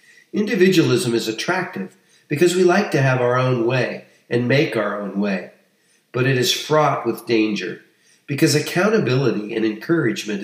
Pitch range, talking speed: 120-160 Hz, 150 wpm